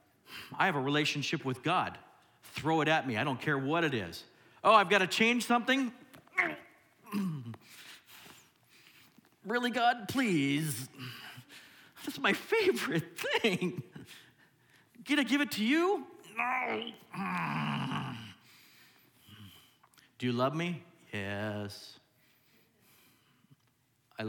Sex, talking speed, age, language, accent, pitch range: male, 105 wpm, 50-69, English, American, 120-160 Hz